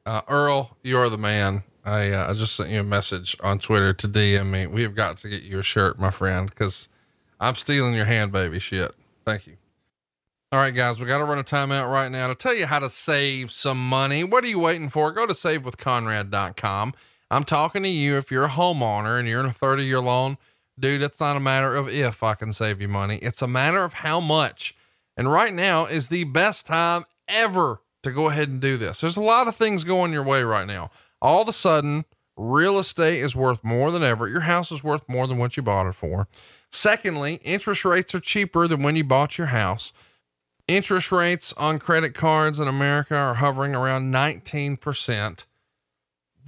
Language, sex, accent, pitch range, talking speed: English, male, American, 110-155 Hz, 215 wpm